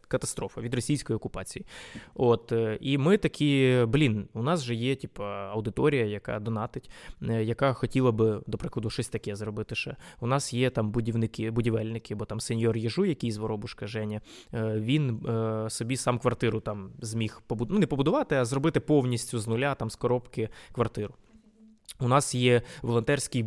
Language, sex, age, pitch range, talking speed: Ukrainian, male, 20-39, 115-140 Hz, 160 wpm